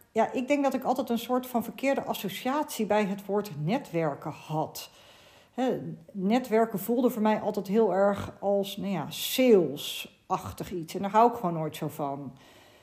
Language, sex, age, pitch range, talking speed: Dutch, female, 40-59, 180-245 Hz, 160 wpm